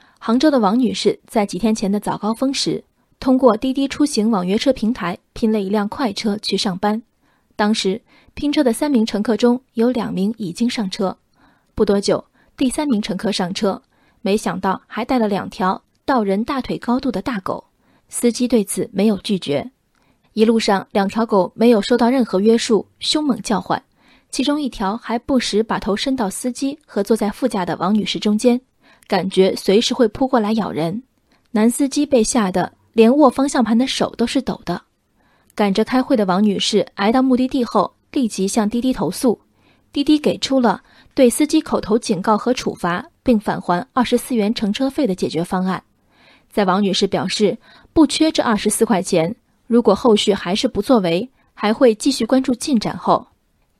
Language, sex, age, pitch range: Chinese, female, 20-39, 200-255 Hz